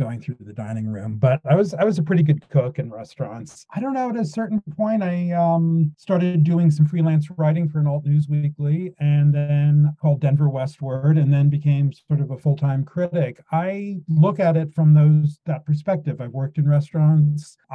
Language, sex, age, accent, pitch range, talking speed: English, male, 30-49, American, 135-155 Hz, 205 wpm